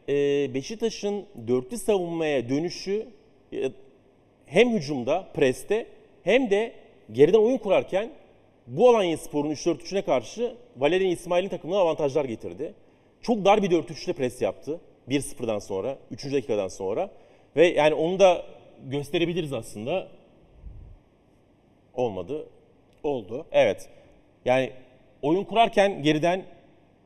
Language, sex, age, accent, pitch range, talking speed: Turkish, male, 40-59, native, 125-190 Hz, 100 wpm